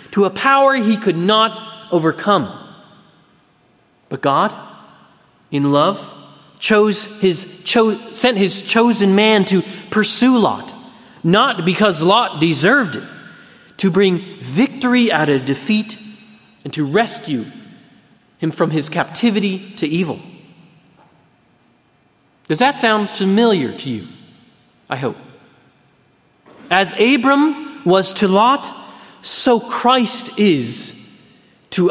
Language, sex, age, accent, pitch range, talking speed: English, male, 30-49, American, 175-230 Hz, 110 wpm